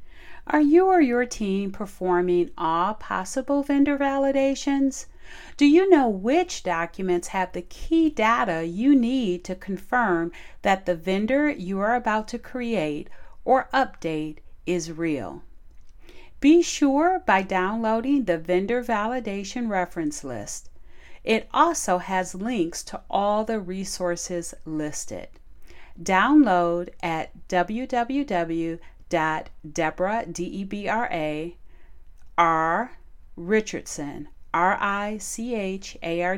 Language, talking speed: English, 115 wpm